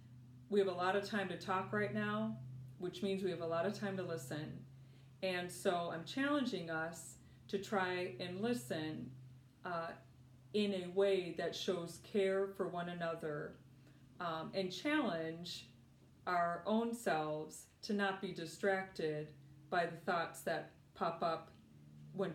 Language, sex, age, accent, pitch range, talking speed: English, female, 40-59, American, 165-195 Hz, 150 wpm